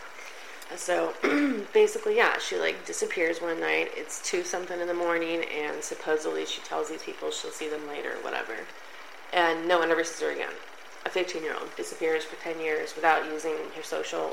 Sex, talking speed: female, 190 wpm